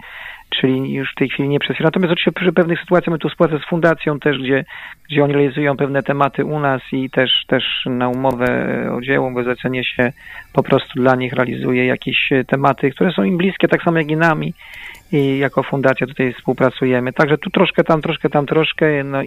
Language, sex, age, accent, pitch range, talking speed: Polish, male, 40-59, native, 135-160 Hz, 200 wpm